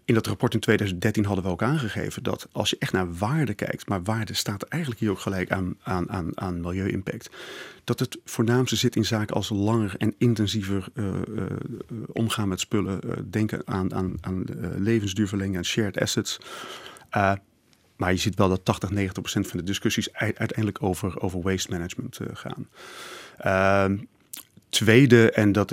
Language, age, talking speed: Dutch, 40-59, 185 wpm